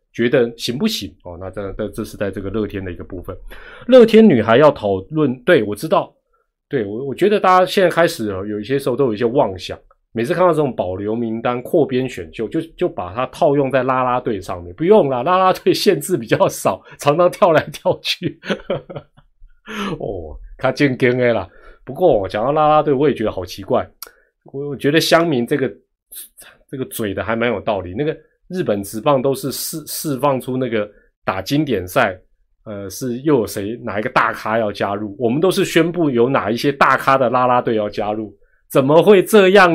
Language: Chinese